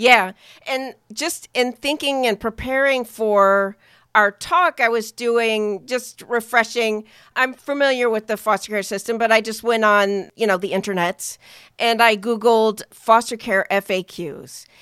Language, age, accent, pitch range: English, 40-59, American, 190-235 Hz